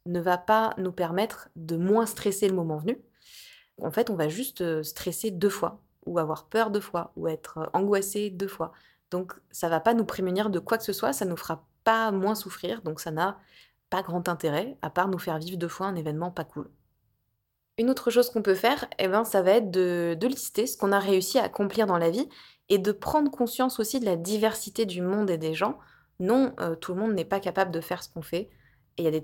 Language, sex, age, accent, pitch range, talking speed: French, female, 20-39, French, 170-215 Hz, 240 wpm